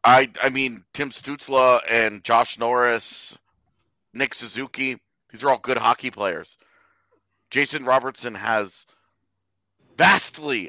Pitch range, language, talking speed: 110-140 Hz, English, 110 wpm